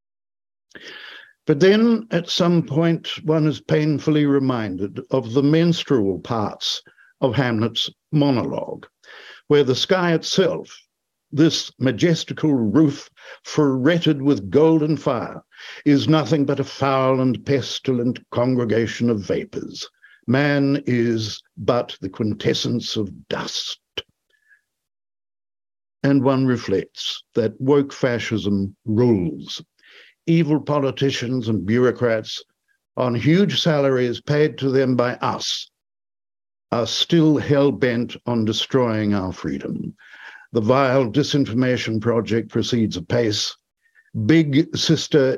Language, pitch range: English, 110-150 Hz